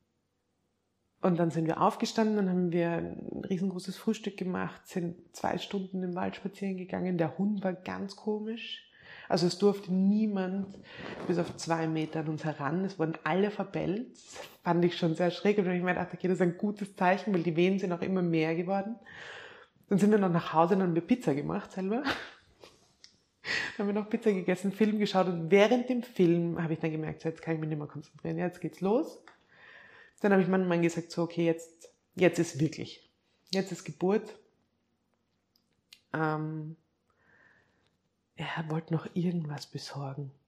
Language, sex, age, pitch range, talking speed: German, female, 20-39, 155-195 Hz, 180 wpm